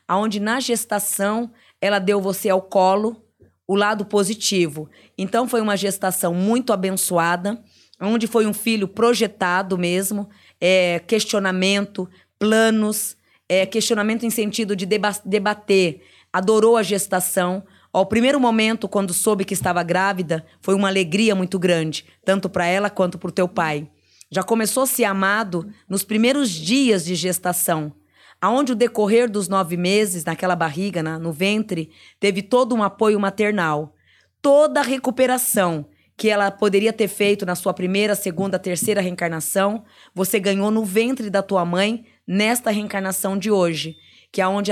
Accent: Brazilian